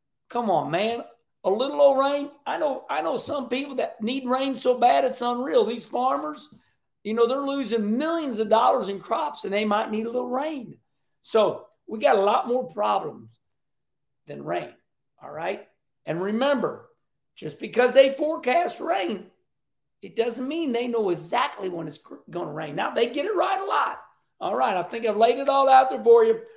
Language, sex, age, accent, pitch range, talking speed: English, male, 50-69, American, 225-300 Hz, 190 wpm